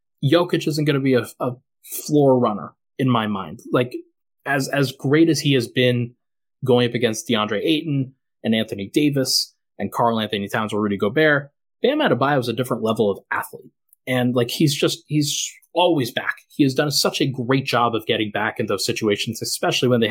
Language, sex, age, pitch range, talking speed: English, male, 20-39, 120-155 Hz, 200 wpm